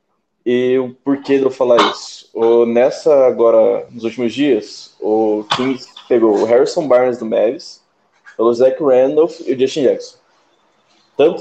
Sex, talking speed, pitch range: male, 155 wpm, 120-140 Hz